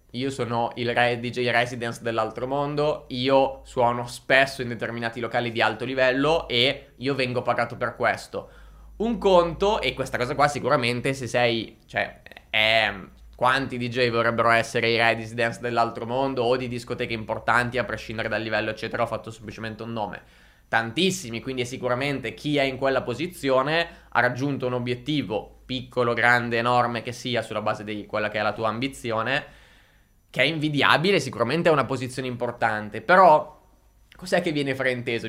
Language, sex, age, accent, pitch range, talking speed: Italian, male, 20-39, native, 115-145 Hz, 165 wpm